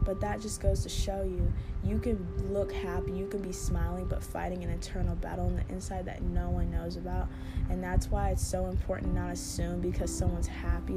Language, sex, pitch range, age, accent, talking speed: English, female, 85-95 Hz, 10-29, American, 220 wpm